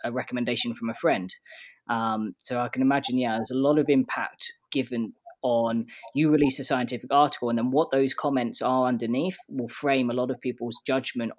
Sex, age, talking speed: female, 20-39, 190 wpm